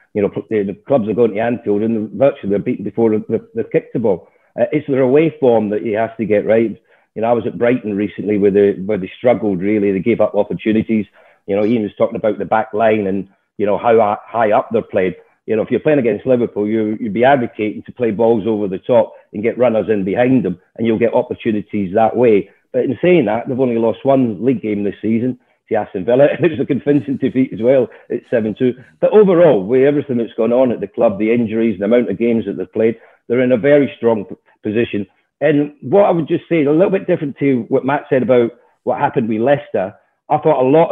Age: 40-59